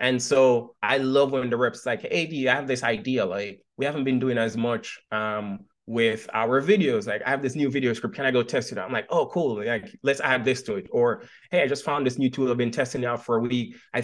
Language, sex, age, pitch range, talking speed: English, male, 20-39, 120-135 Hz, 270 wpm